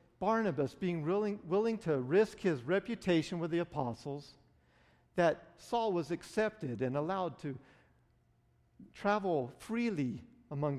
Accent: American